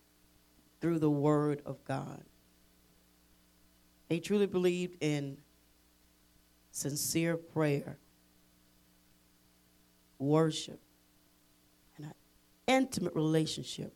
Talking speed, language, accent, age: 70 wpm, English, American, 40-59